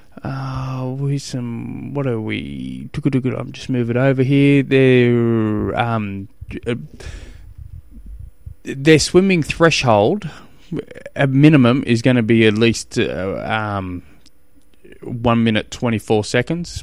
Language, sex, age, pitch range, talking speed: English, male, 20-39, 105-140 Hz, 125 wpm